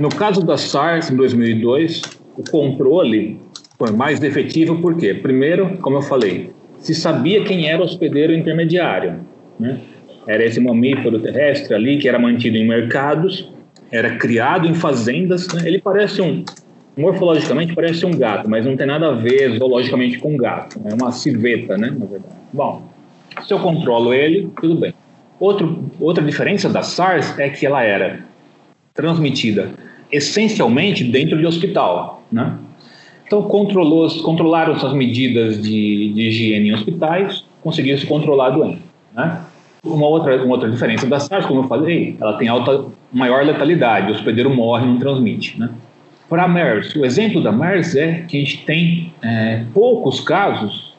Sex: male